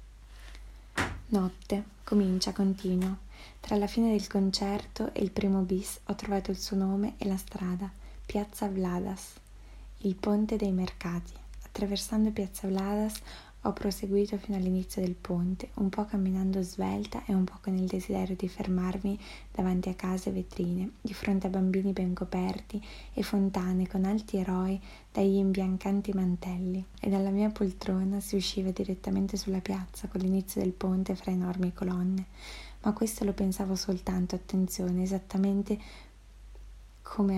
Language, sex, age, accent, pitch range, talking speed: Italian, female, 20-39, native, 185-200 Hz, 145 wpm